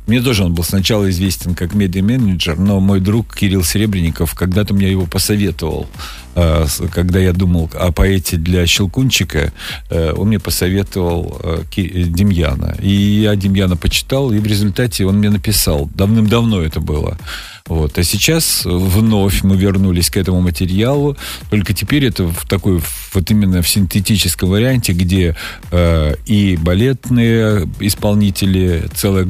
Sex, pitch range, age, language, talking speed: male, 85-105 Hz, 50-69, Russian, 135 wpm